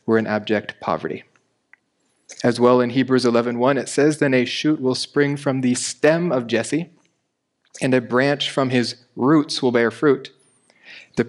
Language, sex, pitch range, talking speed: English, male, 120-135 Hz, 170 wpm